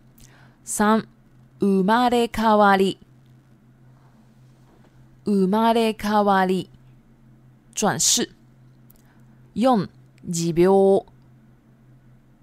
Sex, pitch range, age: female, 125-200 Hz, 20-39